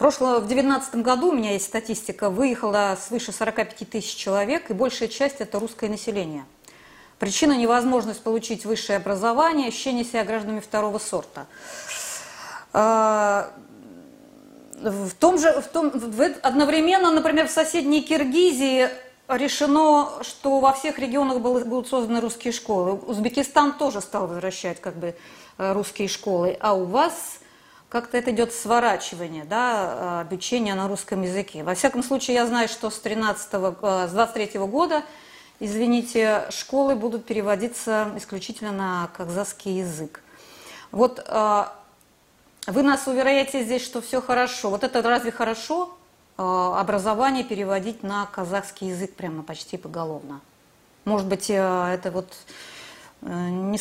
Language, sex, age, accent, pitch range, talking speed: Russian, female, 30-49, native, 200-265 Hz, 125 wpm